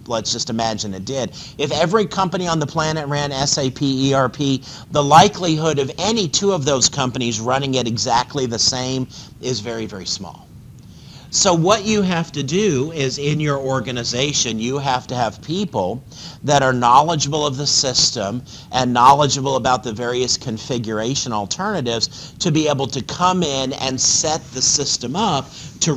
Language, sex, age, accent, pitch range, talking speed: English, male, 50-69, American, 120-145 Hz, 165 wpm